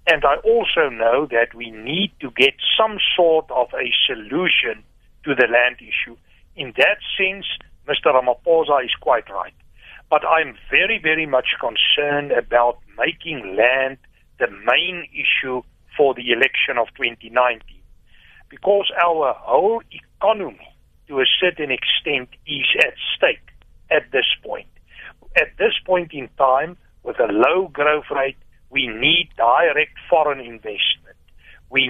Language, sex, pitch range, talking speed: English, male, 130-200 Hz, 135 wpm